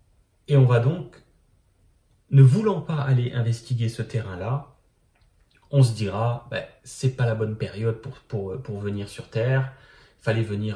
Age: 30-49